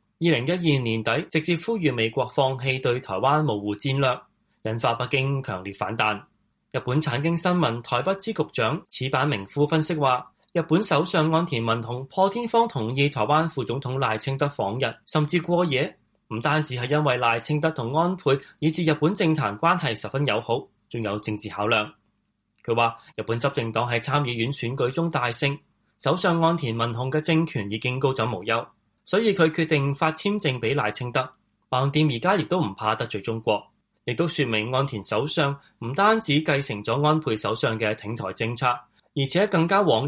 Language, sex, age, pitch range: Chinese, male, 20-39, 115-155 Hz